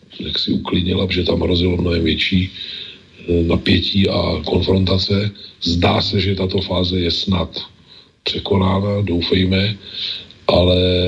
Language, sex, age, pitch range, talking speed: Slovak, male, 40-59, 90-110 Hz, 115 wpm